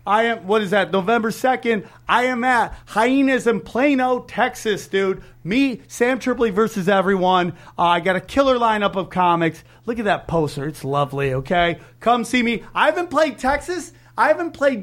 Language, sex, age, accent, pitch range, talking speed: English, male, 30-49, American, 170-235 Hz, 180 wpm